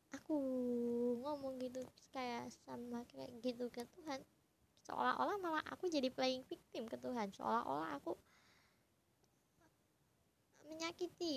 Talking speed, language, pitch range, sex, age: 105 wpm, Indonesian, 240-335 Hz, male, 20-39